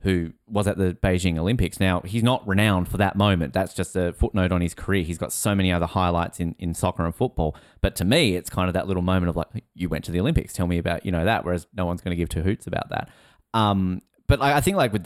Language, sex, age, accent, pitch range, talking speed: English, male, 20-39, Australian, 90-105 Hz, 280 wpm